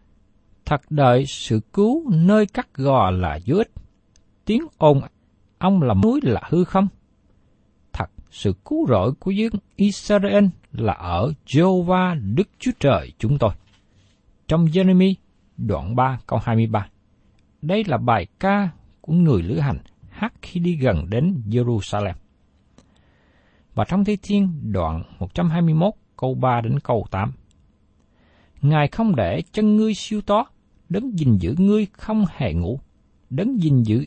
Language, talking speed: Vietnamese, 145 wpm